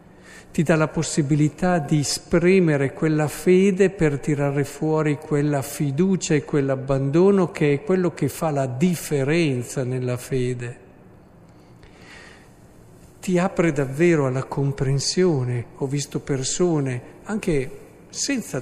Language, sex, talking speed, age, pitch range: Italian, male, 110 wpm, 50-69, 130-170 Hz